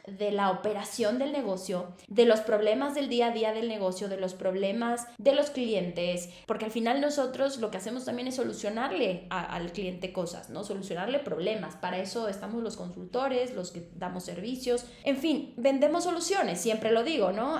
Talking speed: 185 wpm